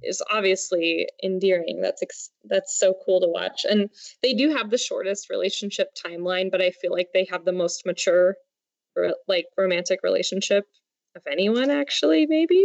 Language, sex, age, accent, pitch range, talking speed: English, female, 20-39, American, 180-215 Hz, 155 wpm